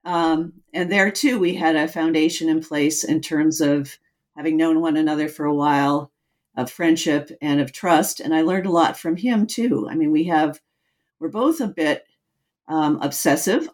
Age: 50-69